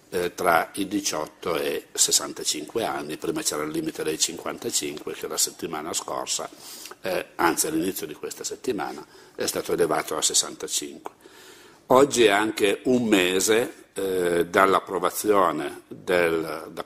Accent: native